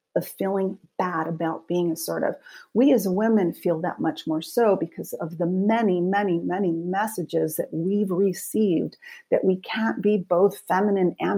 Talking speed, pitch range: 165 wpm, 175-225 Hz